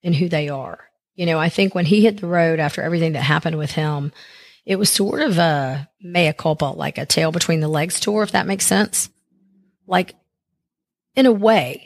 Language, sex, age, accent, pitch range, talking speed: English, female, 40-59, American, 160-195 Hz, 210 wpm